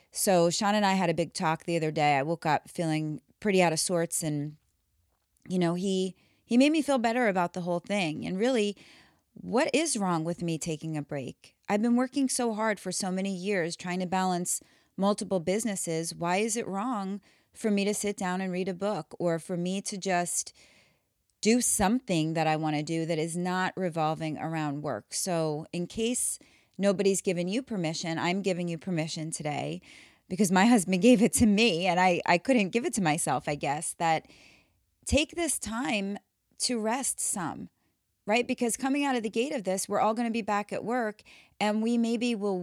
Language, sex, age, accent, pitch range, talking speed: English, female, 30-49, American, 165-210 Hz, 205 wpm